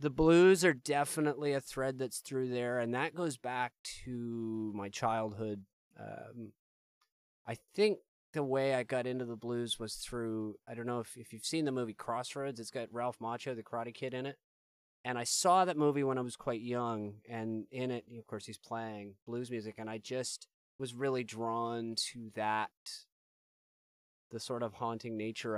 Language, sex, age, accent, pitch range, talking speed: English, male, 30-49, American, 105-125 Hz, 185 wpm